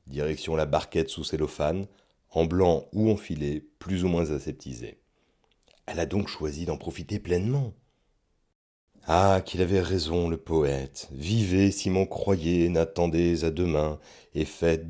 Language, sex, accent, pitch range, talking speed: French, male, French, 80-120 Hz, 145 wpm